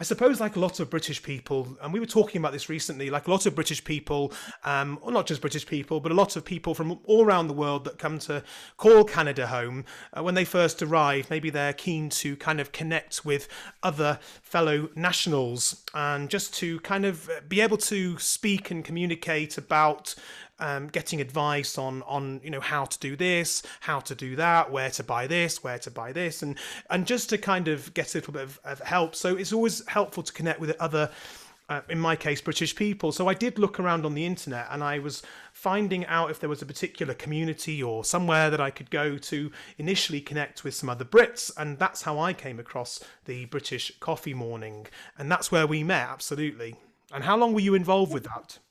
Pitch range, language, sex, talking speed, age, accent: 145-180 Hz, English, male, 220 wpm, 30-49, British